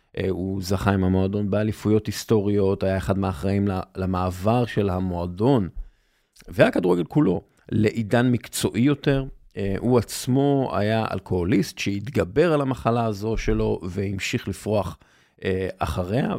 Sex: male